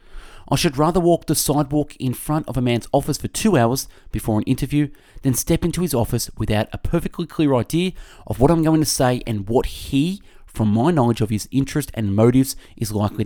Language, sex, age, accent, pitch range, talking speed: English, male, 30-49, Australian, 105-150 Hz, 215 wpm